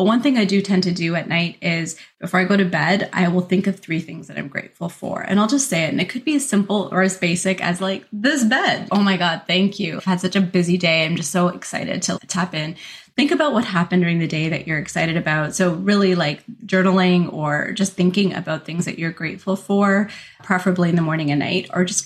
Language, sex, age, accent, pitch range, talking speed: English, female, 20-39, American, 170-205 Hz, 255 wpm